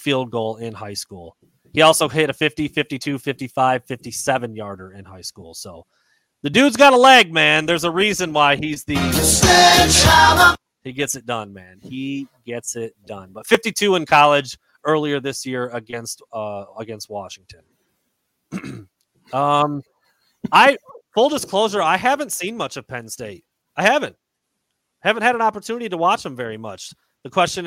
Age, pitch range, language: 30-49, 120-165 Hz, English